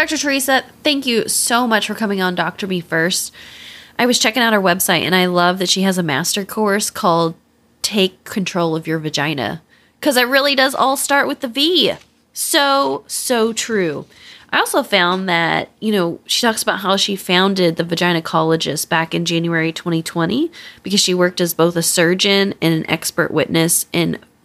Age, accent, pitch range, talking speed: 20-39, American, 170-235 Hz, 185 wpm